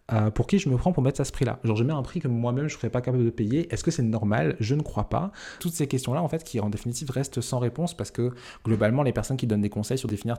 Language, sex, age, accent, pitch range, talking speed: French, male, 20-39, French, 110-135 Hz, 330 wpm